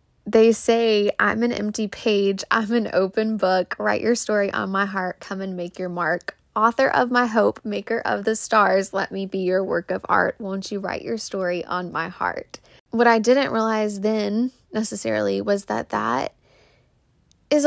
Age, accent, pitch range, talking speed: 10-29, American, 190-220 Hz, 185 wpm